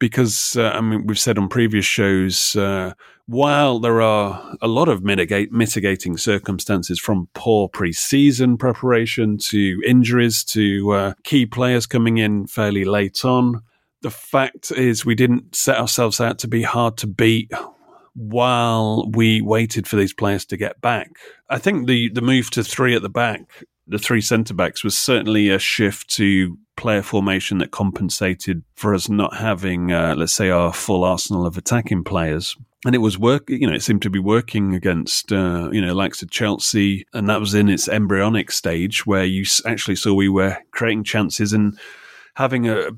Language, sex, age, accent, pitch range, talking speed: English, male, 30-49, British, 100-115 Hz, 180 wpm